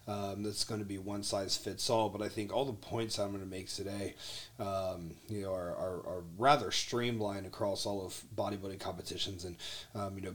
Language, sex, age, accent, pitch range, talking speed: English, male, 30-49, American, 90-110 Hz, 210 wpm